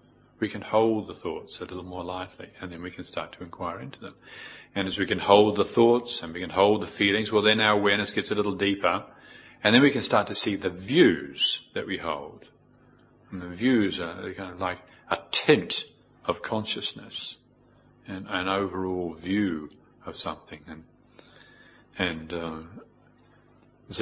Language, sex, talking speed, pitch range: English, male, 180 wpm, 90-110 Hz